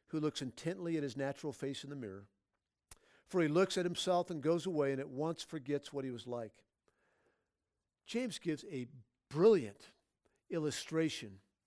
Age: 50-69